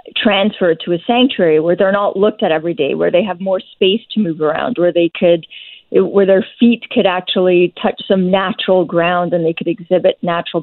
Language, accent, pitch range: English, American, 160-200 Hz